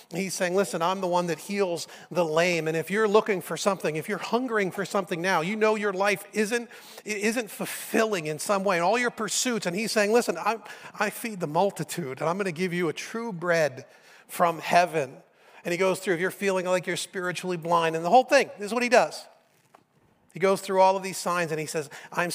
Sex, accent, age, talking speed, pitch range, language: male, American, 40-59, 235 wpm, 155-195 Hz, English